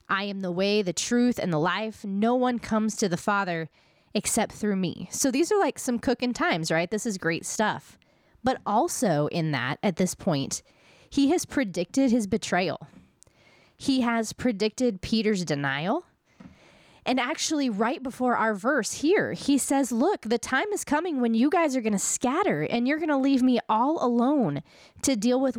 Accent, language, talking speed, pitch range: American, English, 185 wpm, 195-270 Hz